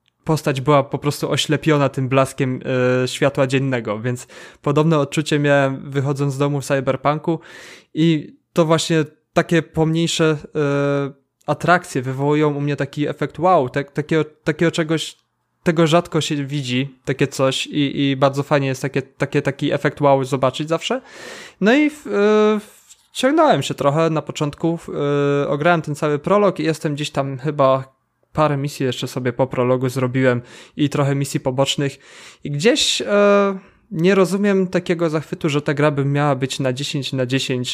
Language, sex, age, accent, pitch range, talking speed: Polish, male, 20-39, native, 135-165 Hz, 145 wpm